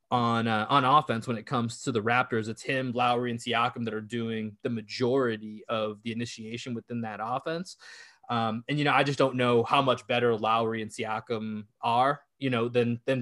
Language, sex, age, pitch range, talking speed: English, male, 20-39, 115-135 Hz, 205 wpm